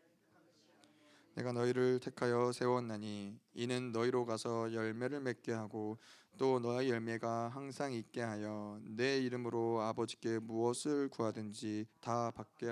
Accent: native